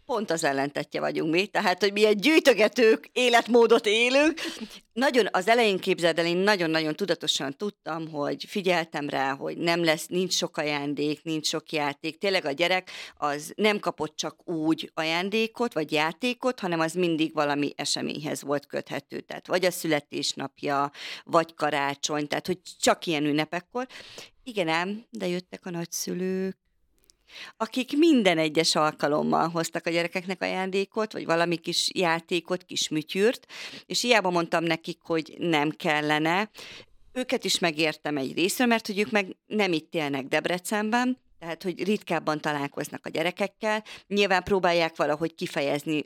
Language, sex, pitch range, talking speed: Hungarian, female, 155-205 Hz, 145 wpm